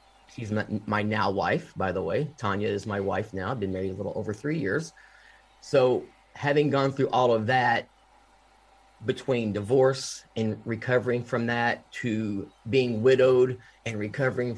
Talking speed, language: 160 wpm, English